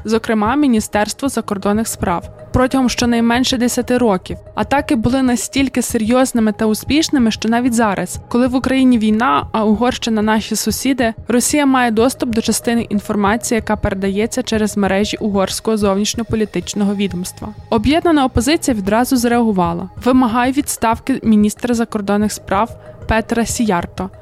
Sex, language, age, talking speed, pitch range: female, Ukrainian, 20-39, 125 wpm, 215-255 Hz